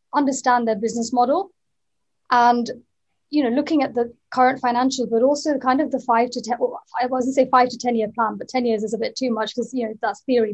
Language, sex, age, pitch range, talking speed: English, female, 30-49, 230-270 Hz, 240 wpm